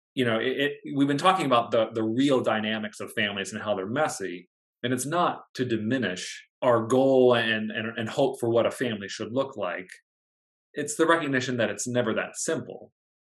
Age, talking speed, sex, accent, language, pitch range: 30-49, 200 wpm, male, American, English, 110-130 Hz